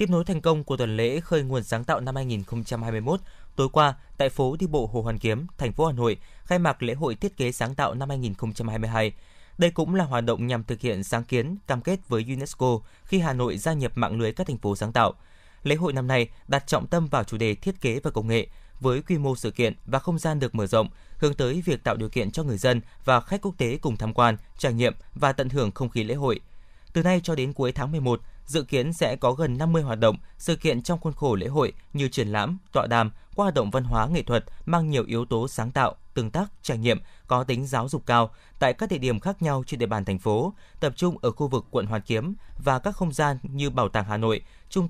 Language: Vietnamese